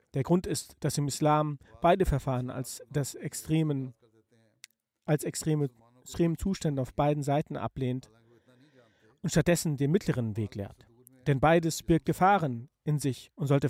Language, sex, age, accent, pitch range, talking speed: German, male, 40-59, German, 120-160 Hz, 135 wpm